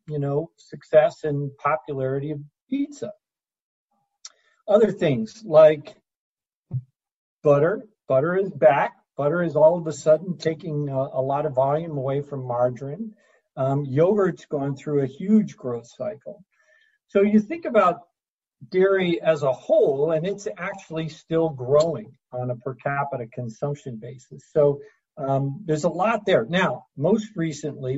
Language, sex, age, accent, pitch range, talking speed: English, male, 50-69, American, 135-185 Hz, 140 wpm